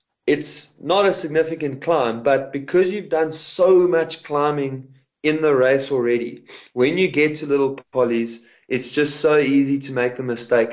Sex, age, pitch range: male, 20-39, 120-150 Hz